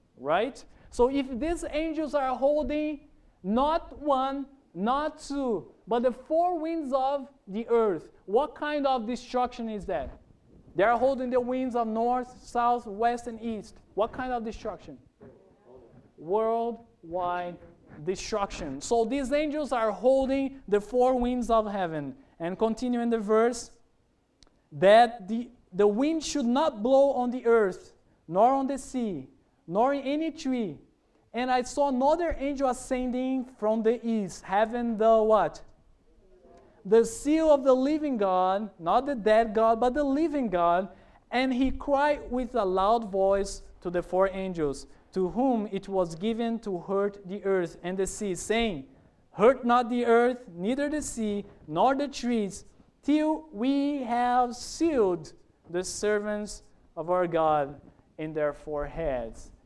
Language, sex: English, male